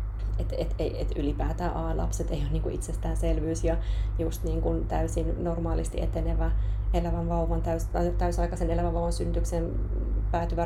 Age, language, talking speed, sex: 20-39, Finnish, 135 wpm, female